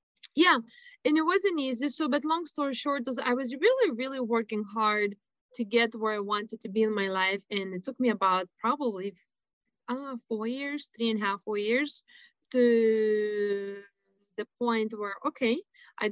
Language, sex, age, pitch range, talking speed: English, female, 20-39, 205-255 Hz, 180 wpm